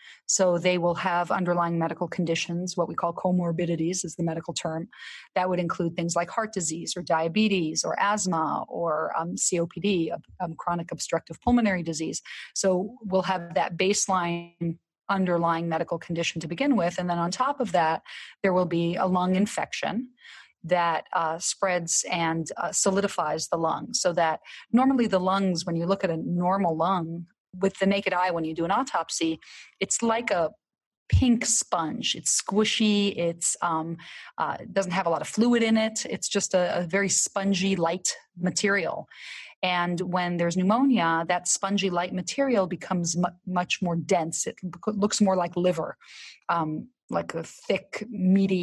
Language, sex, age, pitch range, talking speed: English, female, 30-49, 170-195 Hz, 165 wpm